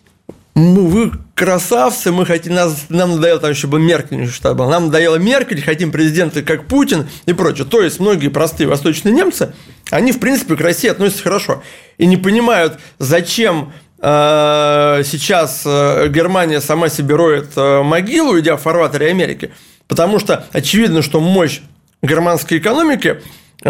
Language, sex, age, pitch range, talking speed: Russian, male, 30-49, 150-180 Hz, 135 wpm